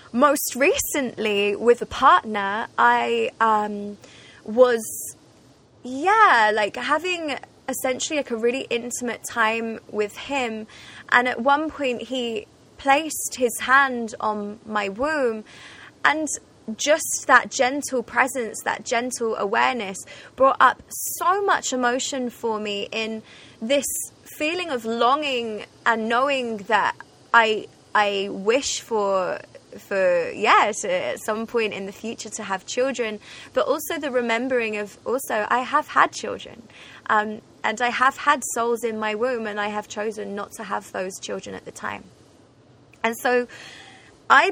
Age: 20-39